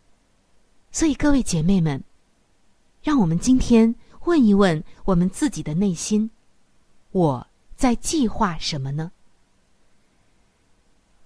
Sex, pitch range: female, 175-255 Hz